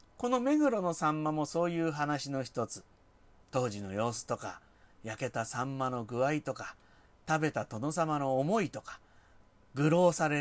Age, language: 40-59, Japanese